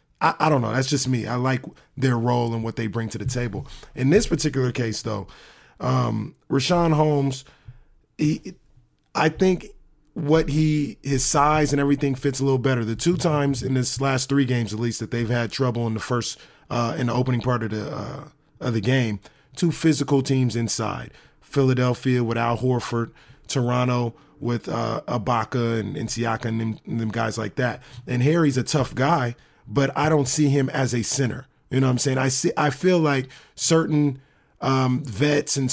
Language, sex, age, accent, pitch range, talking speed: English, male, 30-49, American, 120-145 Hz, 190 wpm